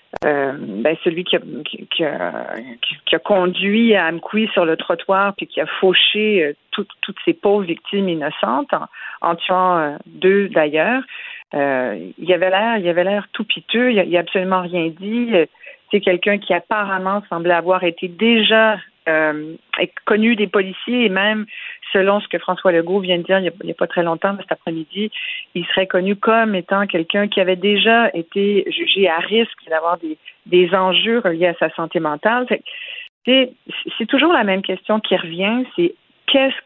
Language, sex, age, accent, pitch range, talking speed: French, female, 40-59, French, 170-215 Hz, 180 wpm